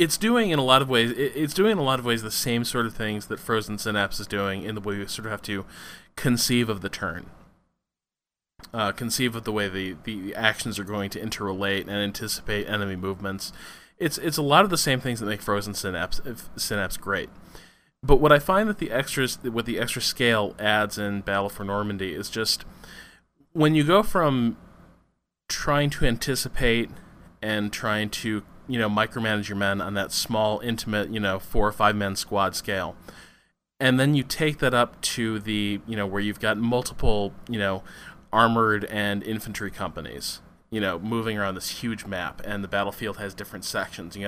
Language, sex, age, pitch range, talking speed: English, male, 20-39, 100-125 Hz, 195 wpm